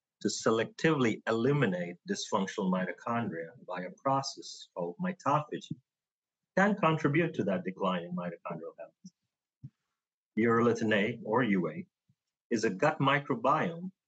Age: 40-59